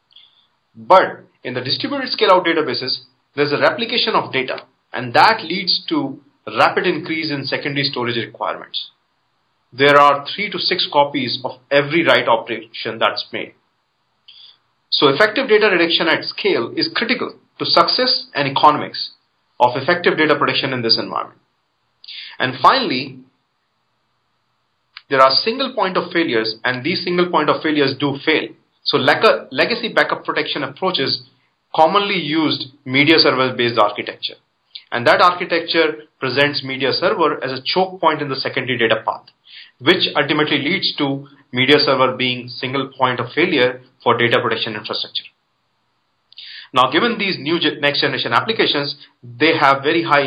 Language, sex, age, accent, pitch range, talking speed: English, male, 30-49, Indian, 130-170 Hz, 140 wpm